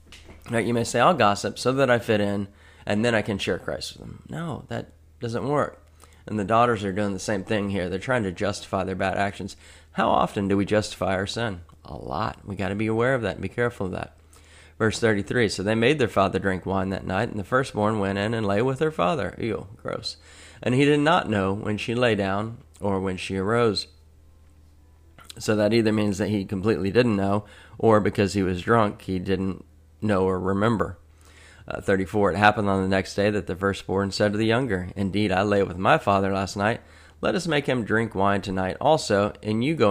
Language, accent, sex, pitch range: English, American, male, 95-110 Hz